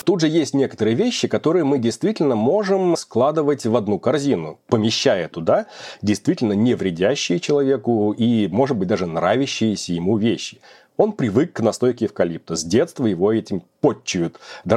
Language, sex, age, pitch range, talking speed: Russian, male, 30-49, 105-145 Hz, 150 wpm